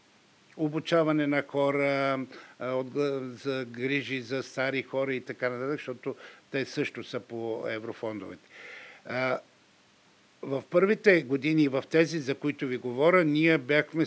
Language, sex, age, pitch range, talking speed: Bulgarian, male, 60-79, 130-155 Hz, 120 wpm